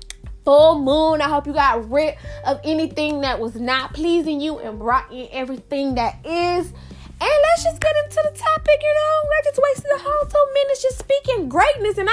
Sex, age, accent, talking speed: female, 10-29, American, 200 wpm